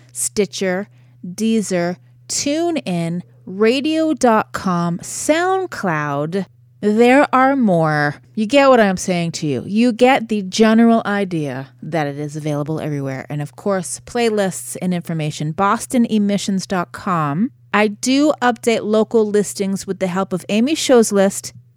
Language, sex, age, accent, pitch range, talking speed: English, female, 30-49, American, 145-205 Hz, 120 wpm